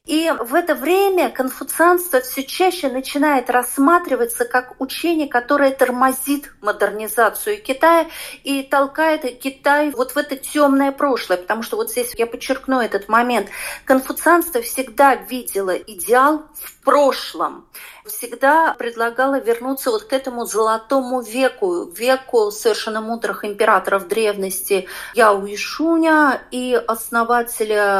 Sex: female